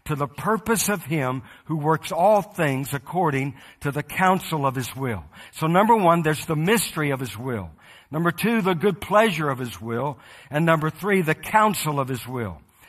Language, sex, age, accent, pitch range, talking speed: English, male, 60-79, American, 140-190 Hz, 190 wpm